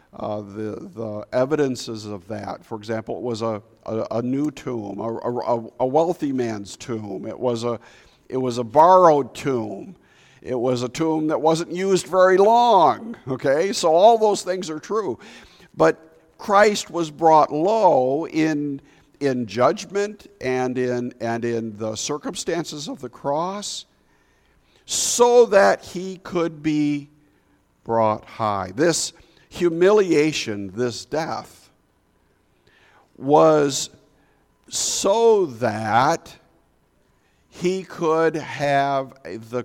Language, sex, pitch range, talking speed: English, male, 115-170 Hz, 120 wpm